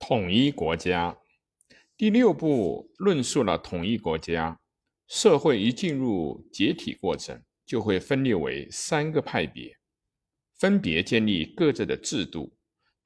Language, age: Chinese, 50-69